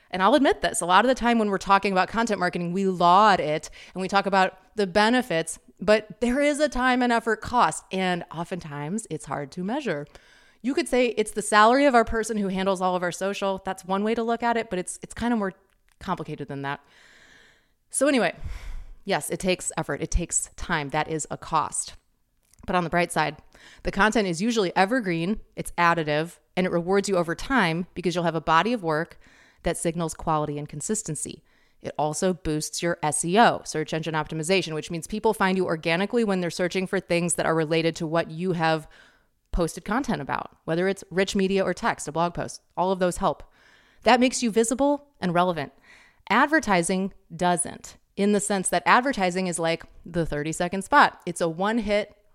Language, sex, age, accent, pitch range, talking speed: English, female, 30-49, American, 165-210 Hz, 200 wpm